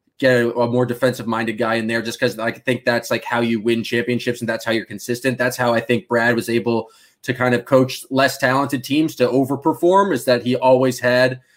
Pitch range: 120-140 Hz